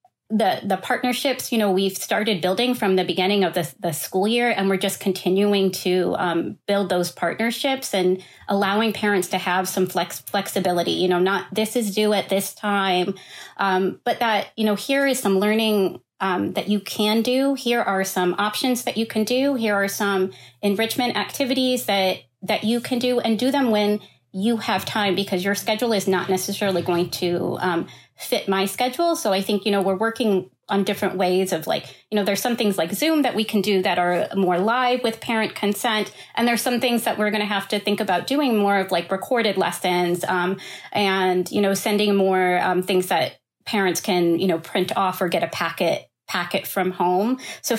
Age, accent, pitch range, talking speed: 30-49, American, 185-230 Hz, 205 wpm